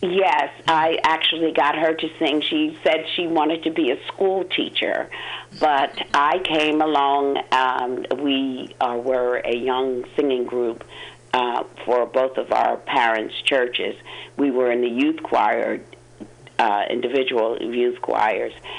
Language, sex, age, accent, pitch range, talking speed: English, female, 50-69, American, 125-165 Hz, 145 wpm